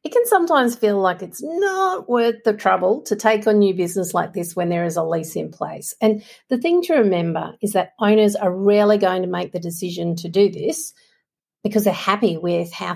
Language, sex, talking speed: English, female, 220 wpm